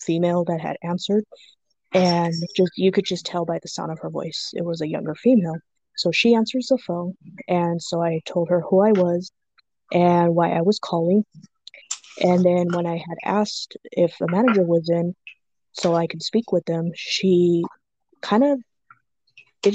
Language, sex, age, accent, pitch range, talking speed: English, female, 20-39, American, 170-205 Hz, 180 wpm